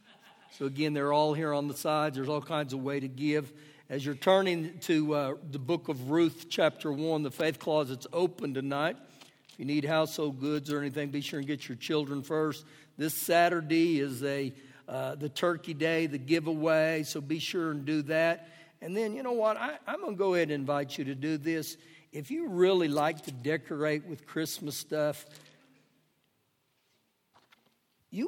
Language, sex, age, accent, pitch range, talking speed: English, male, 60-79, American, 140-165 Hz, 185 wpm